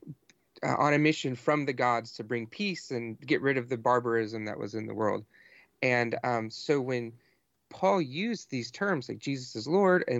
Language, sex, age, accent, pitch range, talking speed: English, male, 30-49, American, 115-150 Hz, 200 wpm